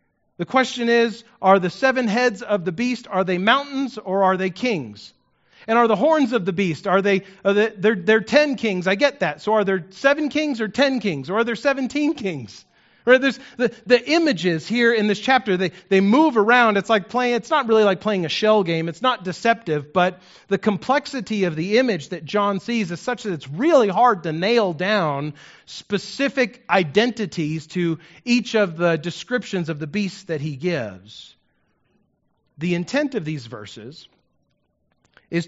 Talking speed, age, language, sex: 190 wpm, 40-59, English, male